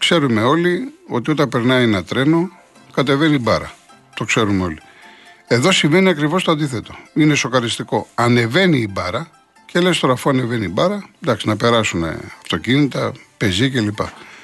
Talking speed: 145 wpm